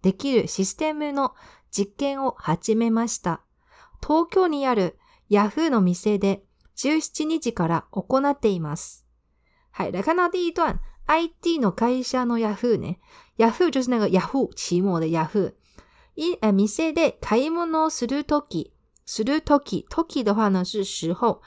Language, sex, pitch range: Chinese, female, 195-290 Hz